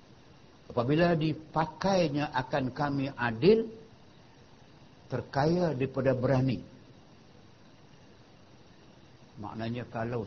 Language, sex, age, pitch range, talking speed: Malay, male, 60-79, 110-140 Hz, 60 wpm